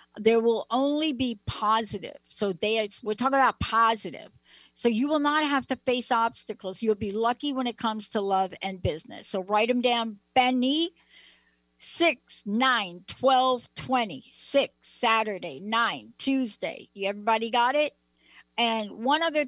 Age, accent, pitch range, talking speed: 60-79, American, 200-255 Hz, 150 wpm